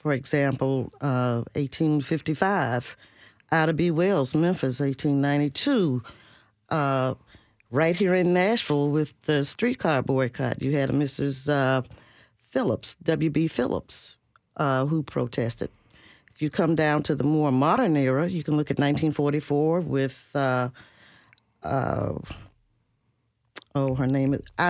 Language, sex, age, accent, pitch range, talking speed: English, female, 50-69, American, 130-160 Hz, 105 wpm